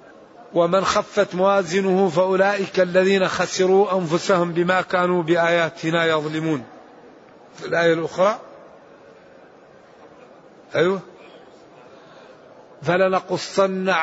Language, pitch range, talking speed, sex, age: Arabic, 180-215 Hz, 70 wpm, male, 50-69